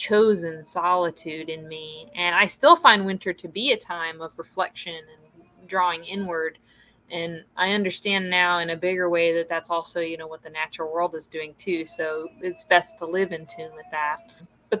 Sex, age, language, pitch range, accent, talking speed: female, 30-49, English, 170-200 Hz, American, 195 wpm